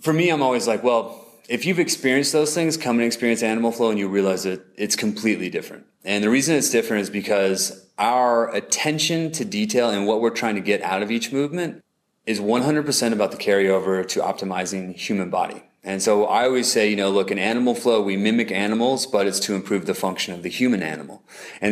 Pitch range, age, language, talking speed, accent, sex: 100-120 Hz, 30-49, English, 215 wpm, American, male